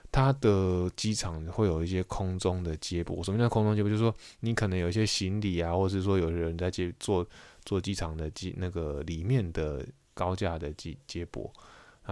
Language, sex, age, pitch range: Chinese, male, 20-39, 85-100 Hz